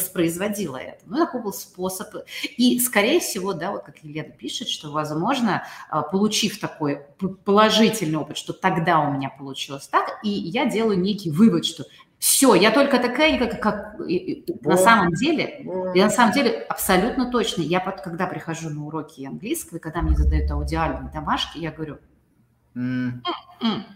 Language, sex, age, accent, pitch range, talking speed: Russian, female, 30-49, native, 160-255 Hz, 165 wpm